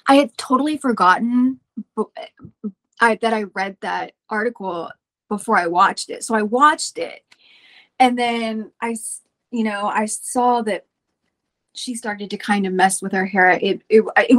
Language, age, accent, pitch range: English, 20-39, American, 210-255 Hz